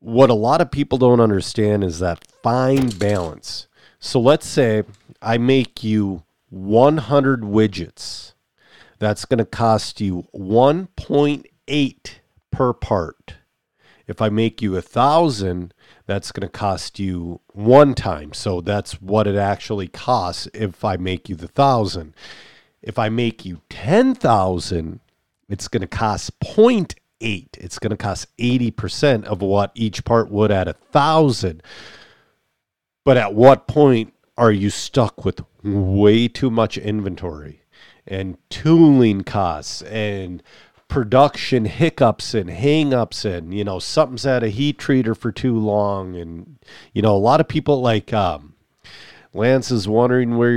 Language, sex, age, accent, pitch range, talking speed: English, male, 50-69, American, 95-125 Hz, 140 wpm